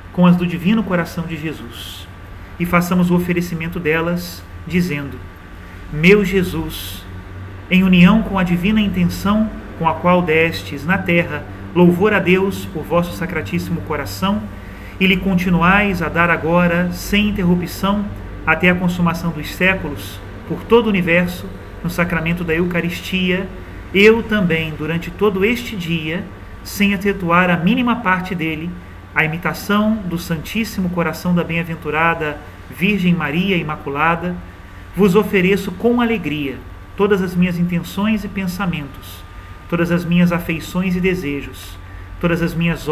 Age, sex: 40-59, male